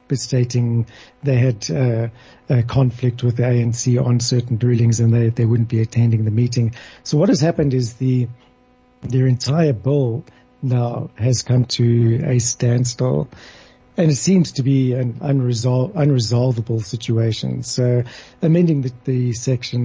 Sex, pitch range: male, 120-130 Hz